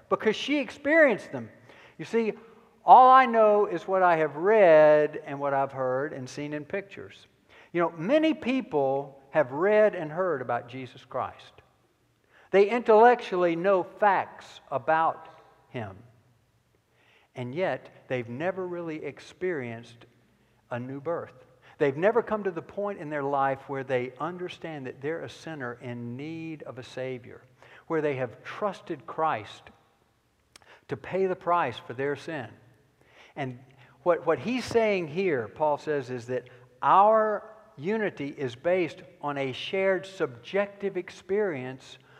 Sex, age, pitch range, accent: male, 60-79, 130-190 Hz, American